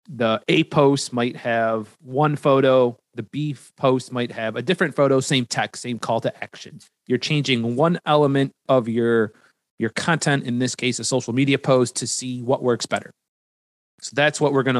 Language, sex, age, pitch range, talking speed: English, male, 30-49, 120-150 Hz, 185 wpm